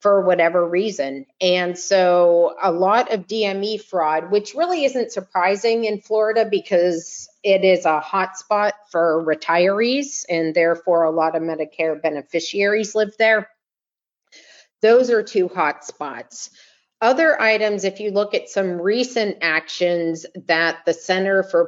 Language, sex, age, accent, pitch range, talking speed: English, female, 40-59, American, 175-215 Hz, 140 wpm